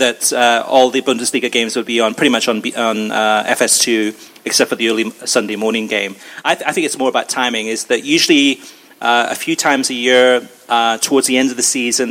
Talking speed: 230 wpm